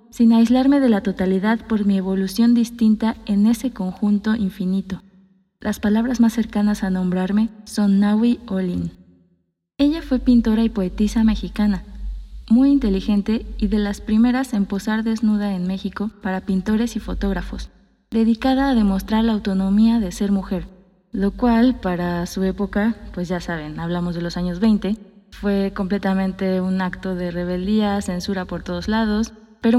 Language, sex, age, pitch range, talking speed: Spanish, female, 20-39, 190-225 Hz, 150 wpm